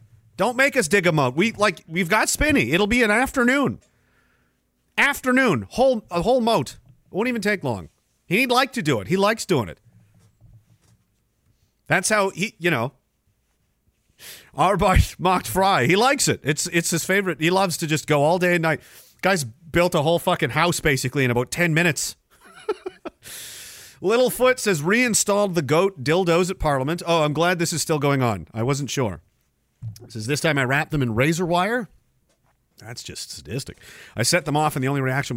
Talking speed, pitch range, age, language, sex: 185 wpm, 115-190 Hz, 40-59, English, male